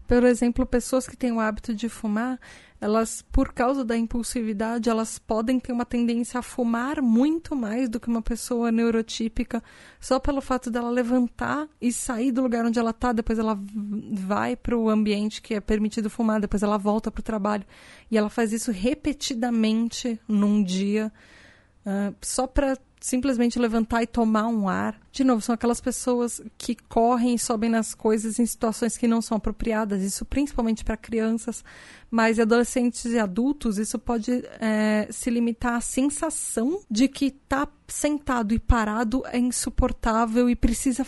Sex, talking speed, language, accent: female, 165 wpm, Portuguese, Brazilian